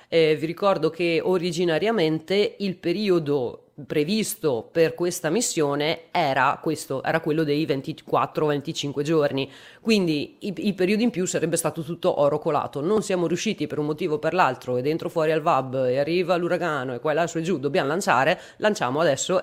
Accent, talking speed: native, 170 wpm